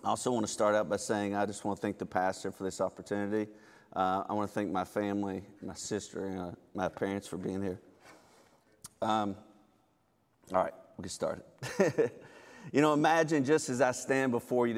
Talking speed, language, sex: 205 wpm, English, male